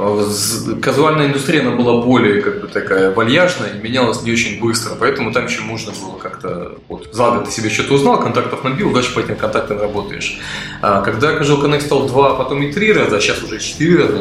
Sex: male